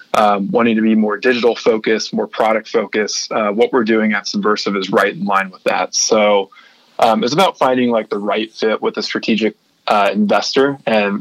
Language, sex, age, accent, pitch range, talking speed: English, male, 20-39, American, 105-120 Hz, 200 wpm